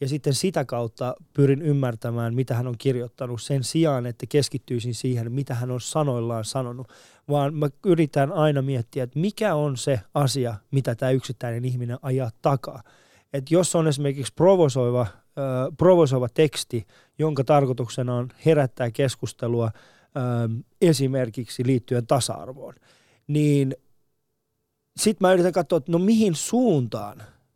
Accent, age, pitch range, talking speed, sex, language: native, 20-39, 125-155 Hz, 135 wpm, male, Finnish